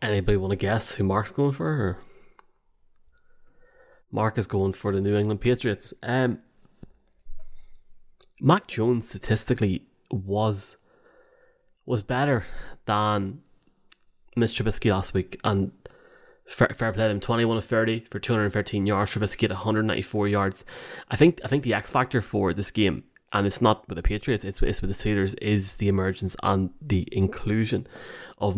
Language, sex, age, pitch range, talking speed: English, male, 20-39, 95-120 Hz, 170 wpm